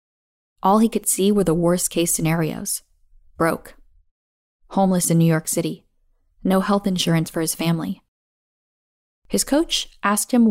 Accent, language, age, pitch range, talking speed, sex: American, English, 10-29, 170-220 Hz, 135 wpm, female